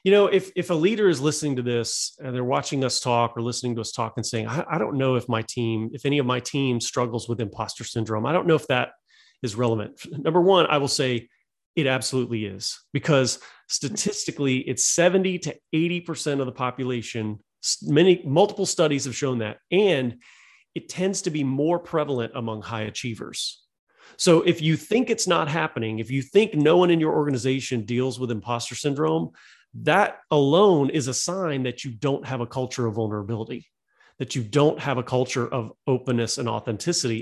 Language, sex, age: English, male, 30-49